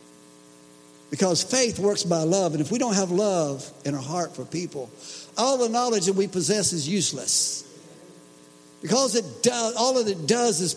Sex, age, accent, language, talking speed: male, 60-79, American, English, 180 wpm